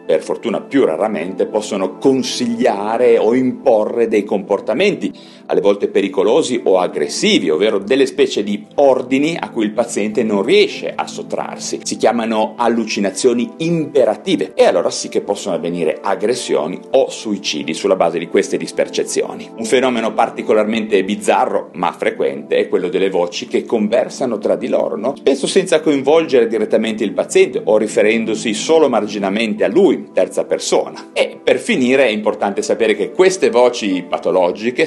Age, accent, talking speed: 40-59, native, 150 wpm